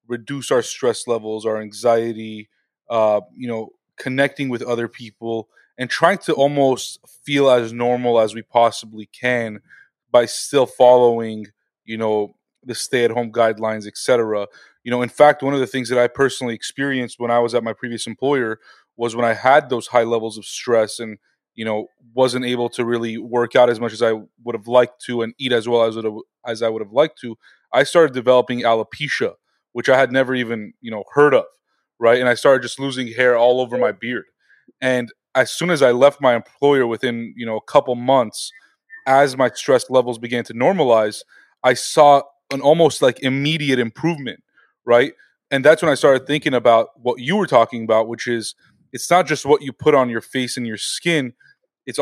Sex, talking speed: male, 200 wpm